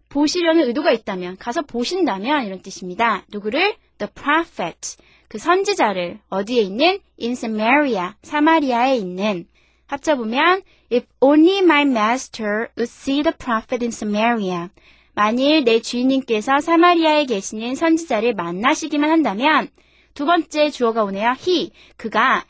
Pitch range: 220-320 Hz